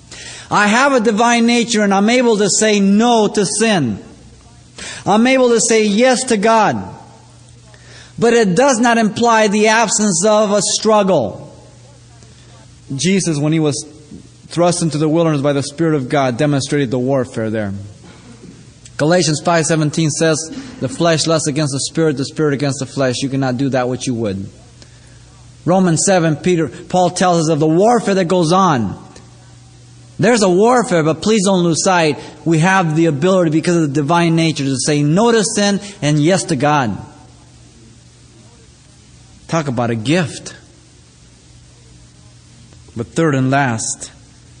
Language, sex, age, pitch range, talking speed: English, male, 30-49, 125-185 Hz, 155 wpm